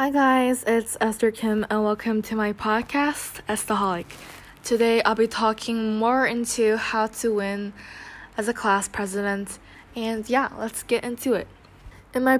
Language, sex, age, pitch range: Korean, female, 10-29, 200-235 Hz